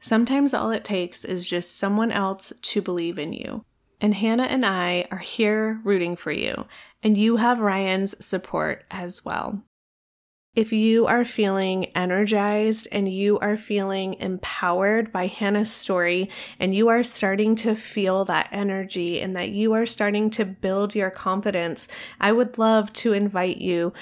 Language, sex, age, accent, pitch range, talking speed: English, female, 20-39, American, 185-220 Hz, 160 wpm